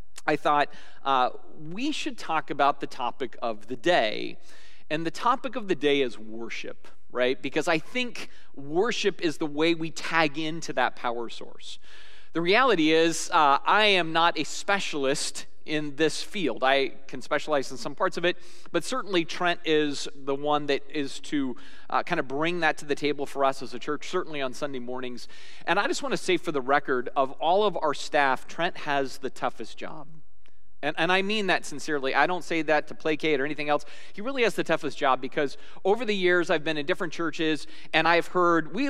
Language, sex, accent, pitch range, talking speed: English, male, American, 145-195 Hz, 205 wpm